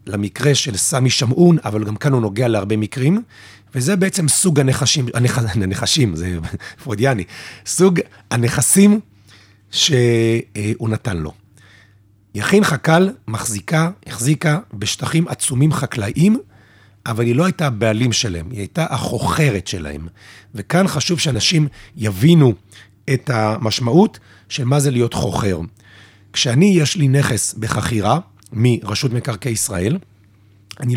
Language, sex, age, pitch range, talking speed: Hebrew, male, 40-59, 105-150 Hz, 115 wpm